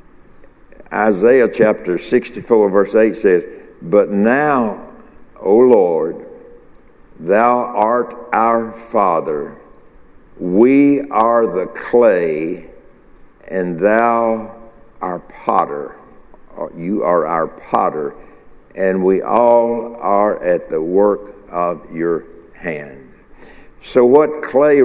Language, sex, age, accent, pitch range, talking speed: English, male, 60-79, American, 90-125 Hz, 95 wpm